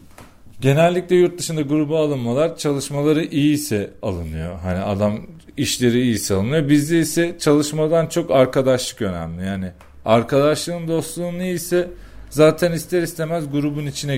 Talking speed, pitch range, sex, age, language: 125 wpm, 105-155 Hz, male, 40-59, Turkish